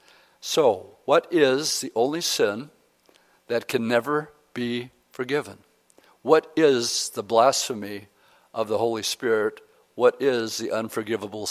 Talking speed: 120 wpm